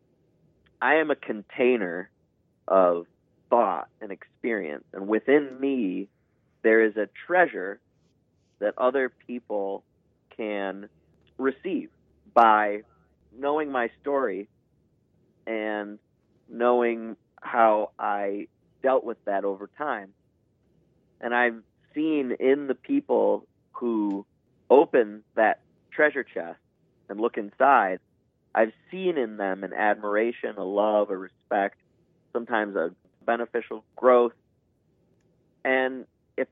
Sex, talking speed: male, 105 wpm